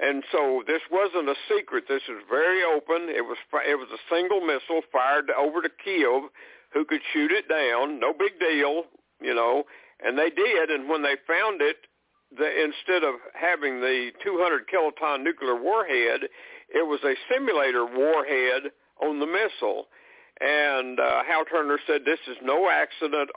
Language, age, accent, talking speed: English, 60-79, American, 165 wpm